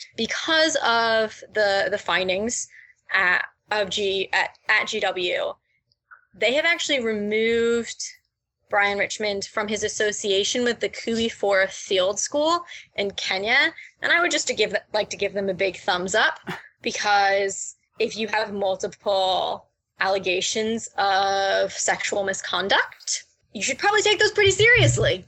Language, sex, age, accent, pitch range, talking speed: English, female, 20-39, American, 195-250 Hz, 140 wpm